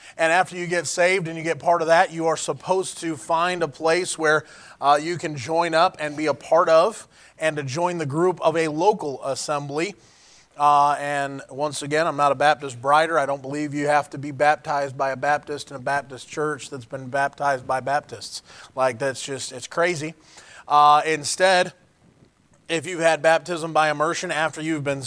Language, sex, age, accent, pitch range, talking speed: English, male, 20-39, American, 145-170 Hz, 200 wpm